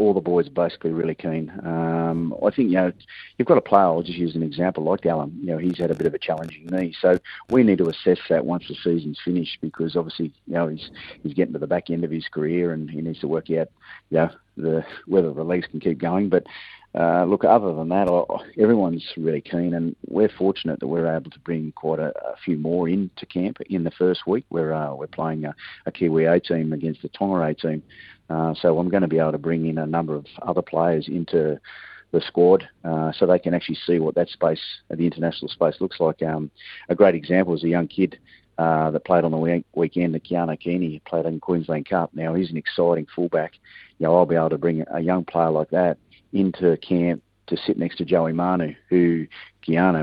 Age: 40-59